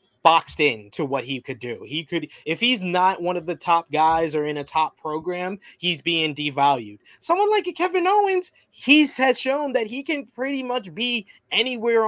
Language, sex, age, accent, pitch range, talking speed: English, male, 20-39, American, 150-190 Hz, 195 wpm